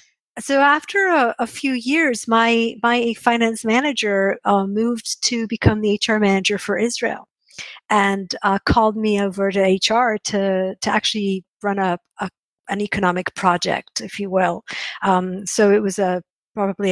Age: 50-69